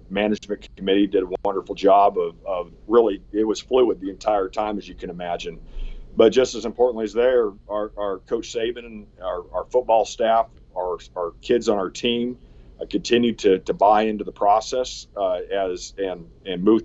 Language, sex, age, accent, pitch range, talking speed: English, male, 40-59, American, 100-120 Hz, 190 wpm